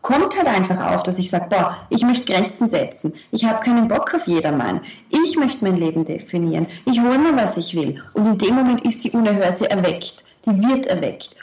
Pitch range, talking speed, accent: 190-245 Hz, 205 wpm, German